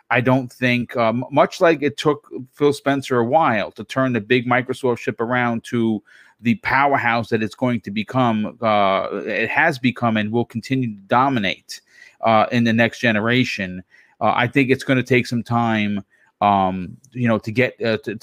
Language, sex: English, male